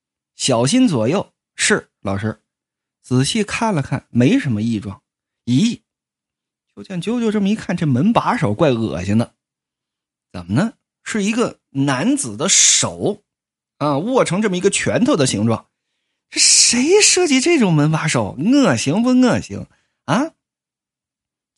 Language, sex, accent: Chinese, male, native